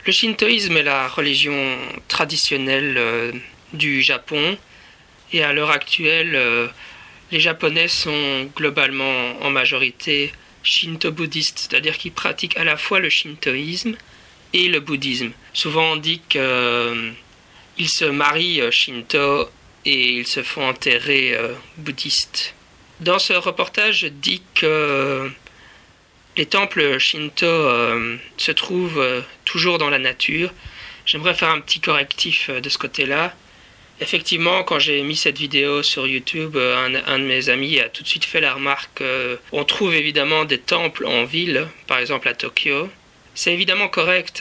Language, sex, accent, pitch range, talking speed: French, male, French, 130-165 Hz, 150 wpm